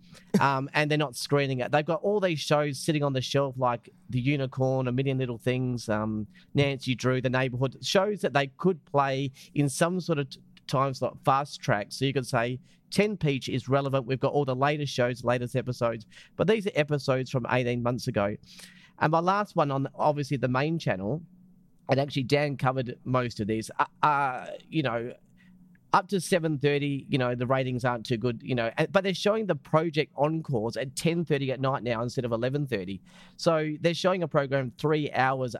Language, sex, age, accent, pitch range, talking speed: English, male, 30-49, Australian, 125-160 Hz, 200 wpm